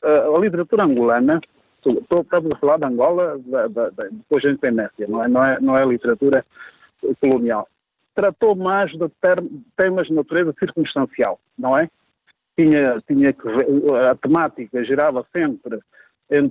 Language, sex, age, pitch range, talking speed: Portuguese, male, 50-69, 130-205 Hz, 155 wpm